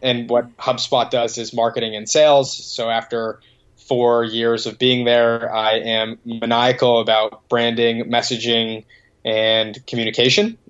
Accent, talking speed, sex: American, 130 wpm, male